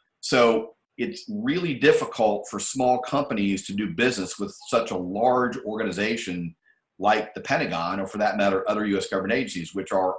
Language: English